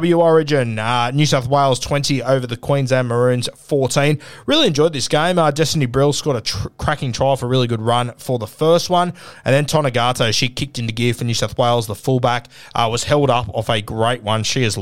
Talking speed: 225 wpm